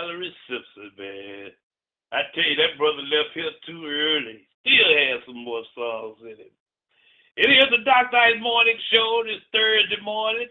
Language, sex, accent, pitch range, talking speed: English, male, American, 145-225 Hz, 160 wpm